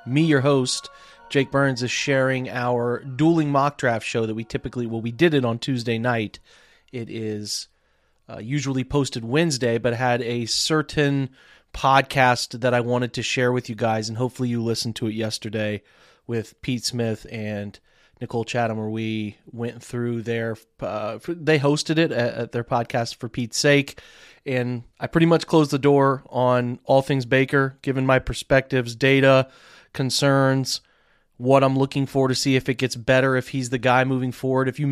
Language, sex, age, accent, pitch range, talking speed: English, male, 30-49, American, 120-135 Hz, 175 wpm